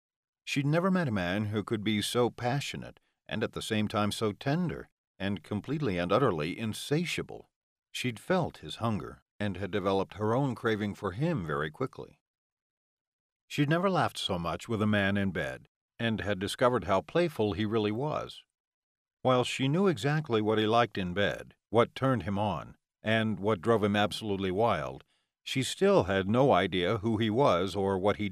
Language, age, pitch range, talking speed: English, 50-69, 100-125 Hz, 180 wpm